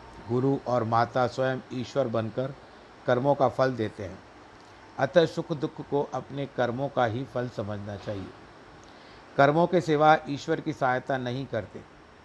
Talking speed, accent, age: 145 wpm, native, 50-69